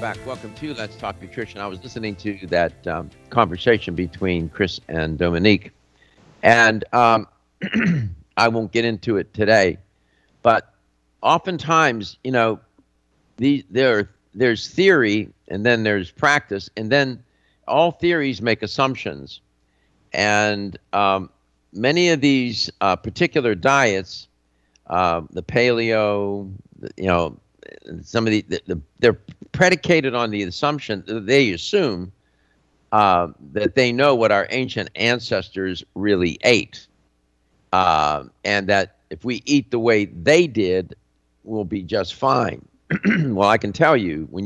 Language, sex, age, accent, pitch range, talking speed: English, male, 60-79, American, 85-120 Hz, 130 wpm